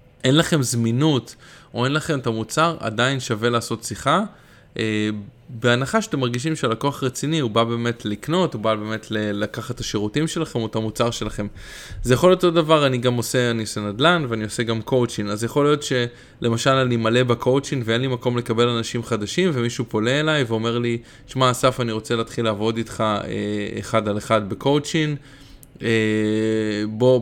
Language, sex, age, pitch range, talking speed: Hebrew, male, 20-39, 110-140 Hz, 170 wpm